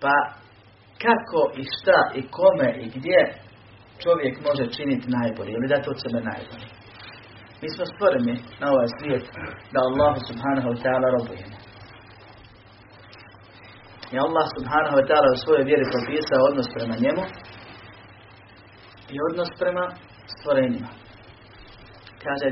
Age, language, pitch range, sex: 30-49, Croatian, 110-135 Hz, male